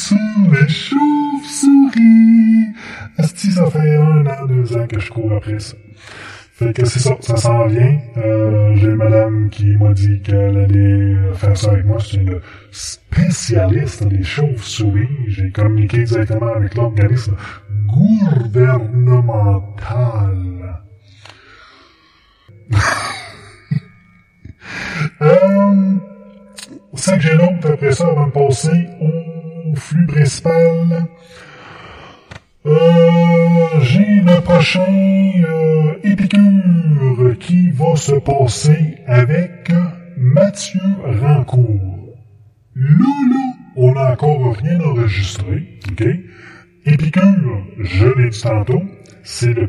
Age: 10-29